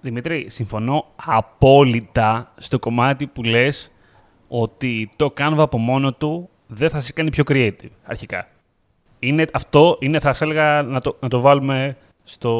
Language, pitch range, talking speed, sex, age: Greek, 115-150 Hz, 155 wpm, male, 30-49